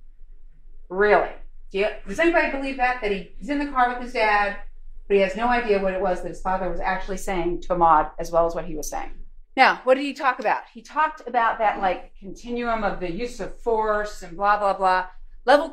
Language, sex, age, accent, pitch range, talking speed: English, female, 40-59, American, 200-300 Hz, 235 wpm